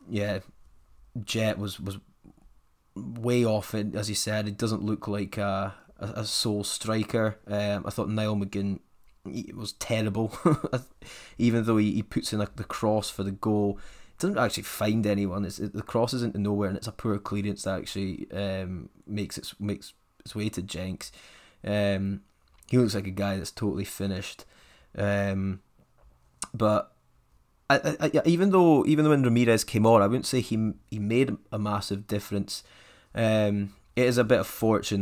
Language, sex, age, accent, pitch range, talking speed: English, male, 20-39, British, 100-115 Hz, 175 wpm